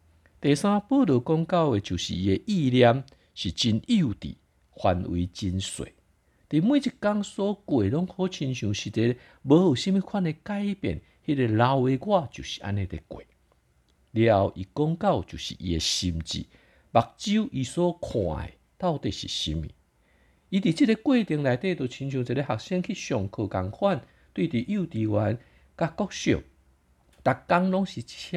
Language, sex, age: Chinese, male, 50-69